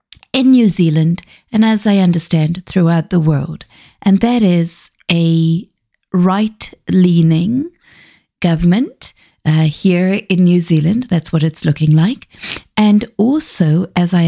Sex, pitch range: female, 160-215 Hz